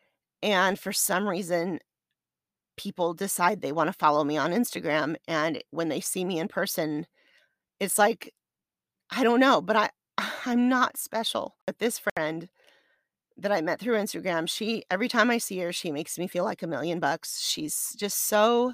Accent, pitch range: American, 180-225 Hz